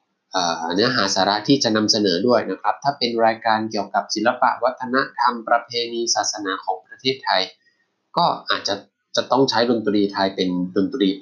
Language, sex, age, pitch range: Thai, male, 20-39, 100-125 Hz